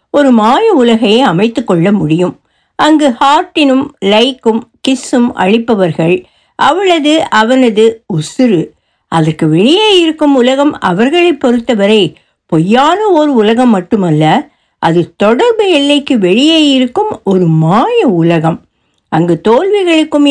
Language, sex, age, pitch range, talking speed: Tamil, female, 60-79, 195-295 Hz, 100 wpm